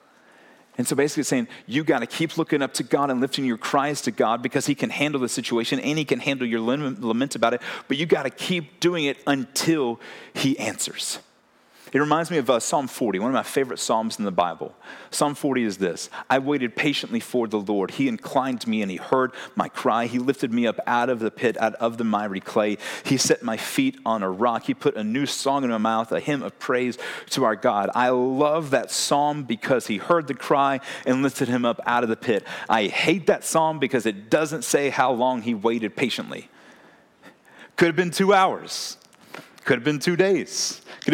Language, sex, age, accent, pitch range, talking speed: English, male, 40-59, American, 120-165 Hz, 220 wpm